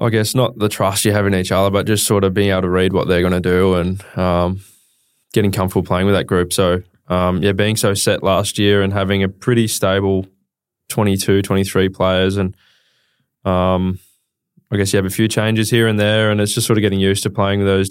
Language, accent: English, Australian